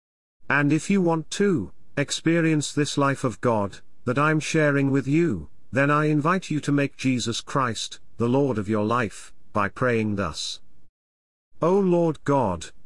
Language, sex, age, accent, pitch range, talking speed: English, male, 50-69, British, 100-145 Hz, 160 wpm